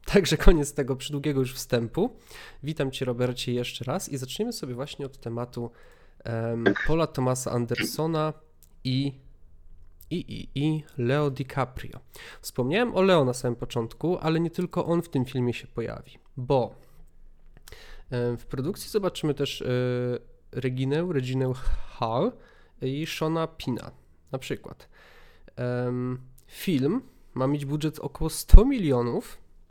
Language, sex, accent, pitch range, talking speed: Polish, male, native, 125-160 Hz, 130 wpm